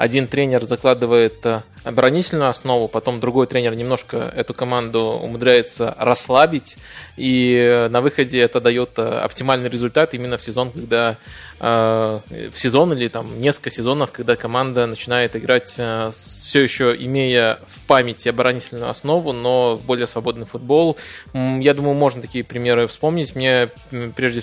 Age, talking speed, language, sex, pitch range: 20-39, 130 wpm, Russian, male, 115-130 Hz